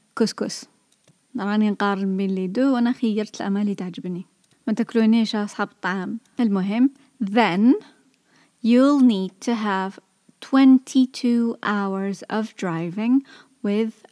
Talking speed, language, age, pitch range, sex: 60 wpm, Arabic, 20-39, 195-240 Hz, female